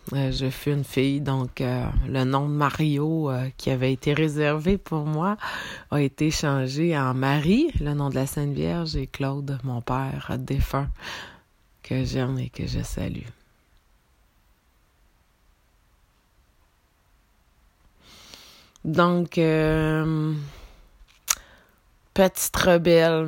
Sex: female